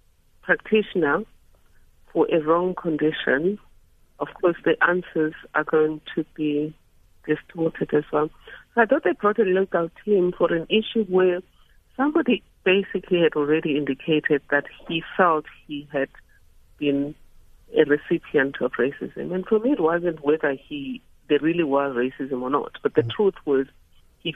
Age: 60-79